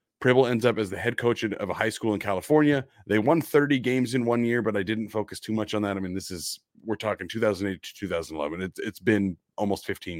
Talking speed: 245 wpm